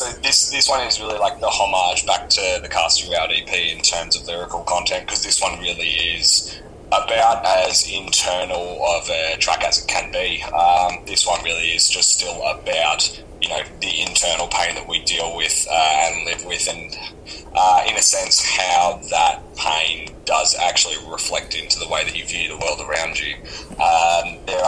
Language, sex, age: English, male, 20-39